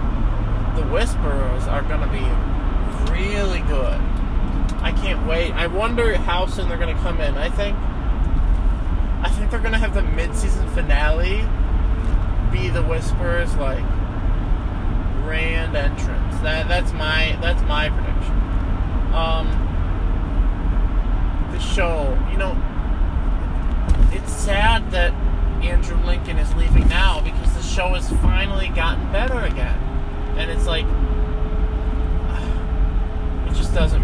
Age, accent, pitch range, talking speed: 30-49, American, 80-95 Hz, 120 wpm